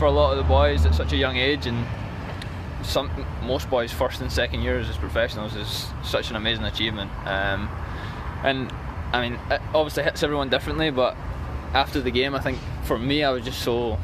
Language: English